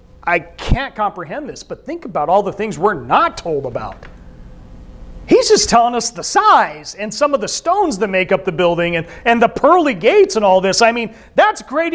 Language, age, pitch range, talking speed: English, 40-59, 185-260 Hz, 210 wpm